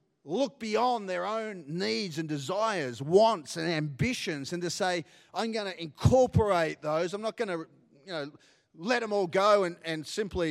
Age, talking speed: 30-49, 175 wpm